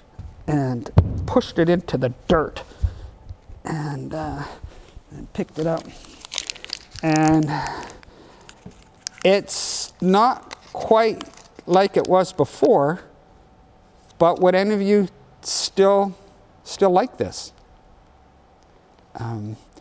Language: English